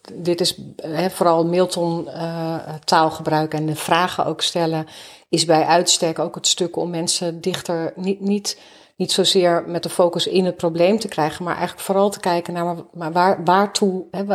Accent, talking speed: Dutch, 160 wpm